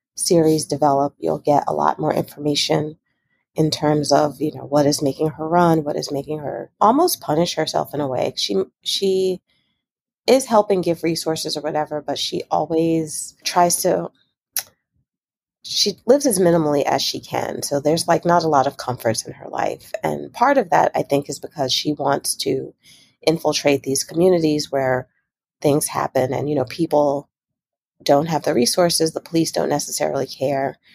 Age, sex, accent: 30-49, female, American